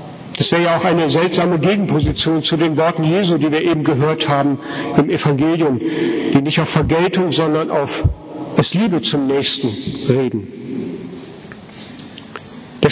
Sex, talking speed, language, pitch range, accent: male, 140 wpm, German, 160-200 Hz, German